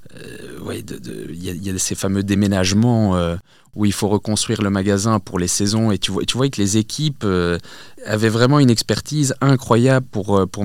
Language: French